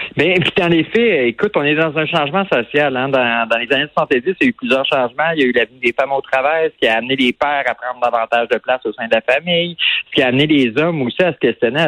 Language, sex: French, male